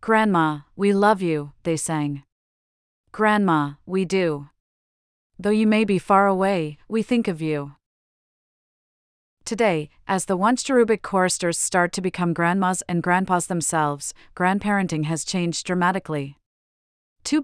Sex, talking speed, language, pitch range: female, 125 wpm, English, 155-195 Hz